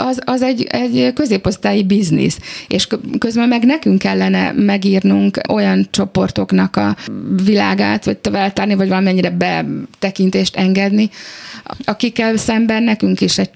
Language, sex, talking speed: Hungarian, female, 120 wpm